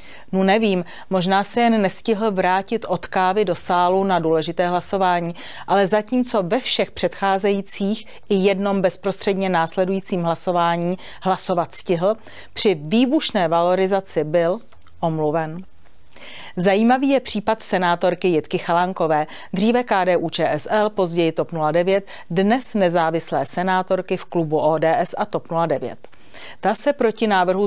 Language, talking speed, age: Czech, 120 wpm, 40-59